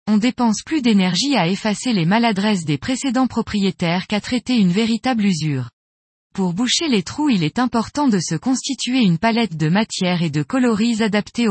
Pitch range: 180-245 Hz